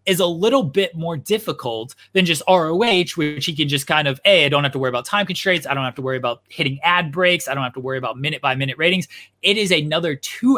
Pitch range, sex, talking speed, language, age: 125-180 Hz, male, 265 wpm, English, 20-39